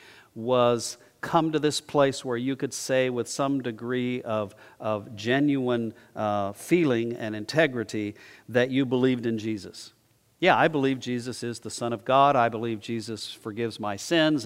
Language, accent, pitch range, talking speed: English, American, 115-150 Hz, 160 wpm